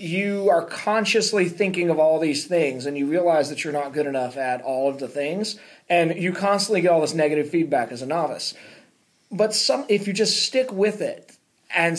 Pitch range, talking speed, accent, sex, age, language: 145-195 Hz, 200 wpm, American, male, 30-49, English